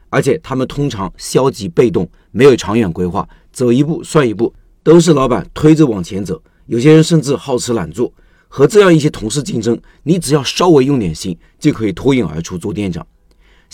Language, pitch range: Chinese, 115-155 Hz